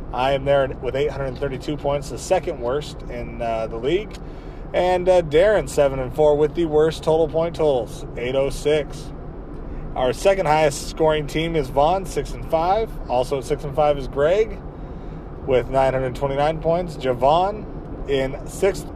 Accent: American